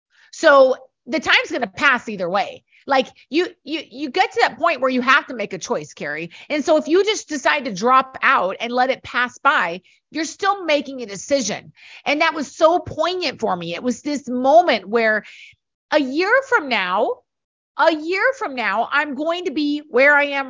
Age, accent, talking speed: 30-49, American, 200 wpm